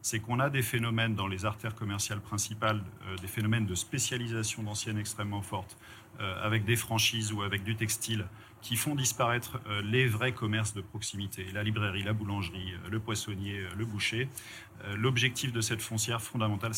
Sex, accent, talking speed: male, French, 175 wpm